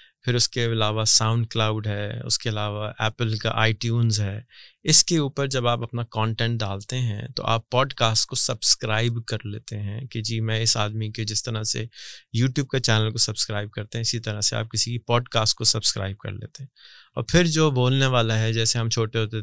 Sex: male